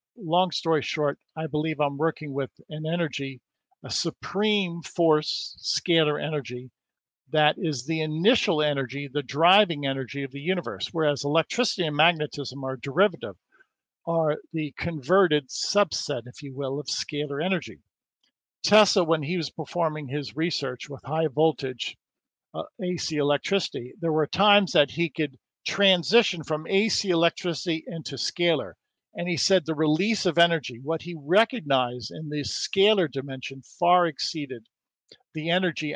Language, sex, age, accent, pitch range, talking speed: English, male, 50-69, American, 140-175 Hz, 140 wpm